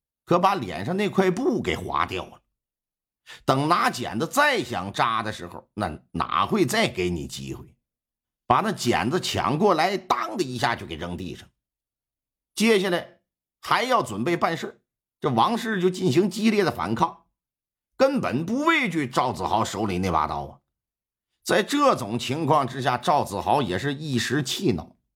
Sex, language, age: male, Chinese, 50-69